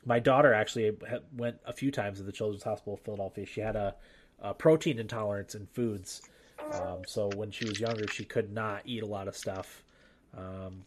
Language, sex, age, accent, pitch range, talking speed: English, male, 20-39, American, 100-120 Hz, 200 wpm